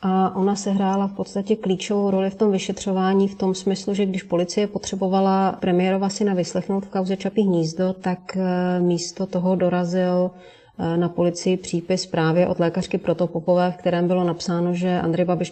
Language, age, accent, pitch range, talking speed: Czech, 30-49, native, 170-185 Hz, 165 wpm